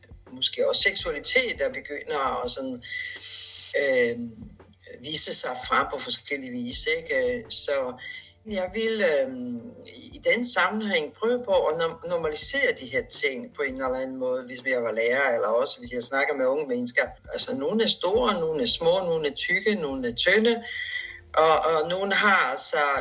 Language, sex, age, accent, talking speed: Danish, female, 60-79, native, 165 wpm